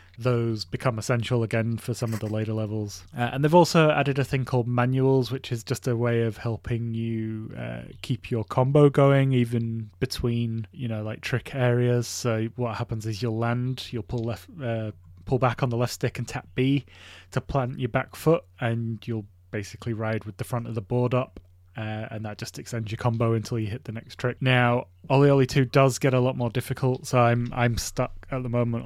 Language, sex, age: English, male, 20-39